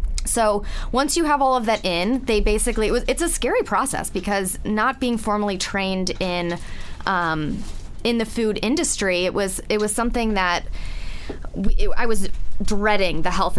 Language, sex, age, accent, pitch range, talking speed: English, female, 20-39, American, 180-225 Hz, 175 wpm